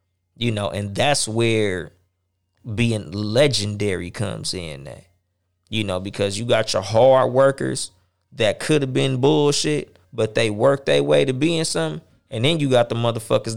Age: 20-39